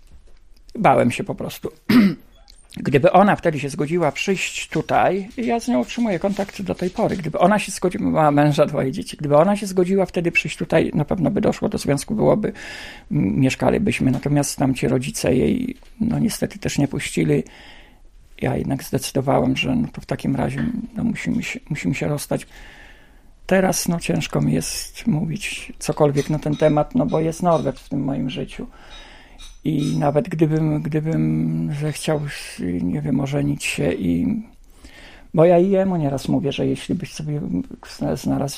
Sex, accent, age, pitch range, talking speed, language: male, native, 50-69, 145-185 Hz, 165 wpm, Polish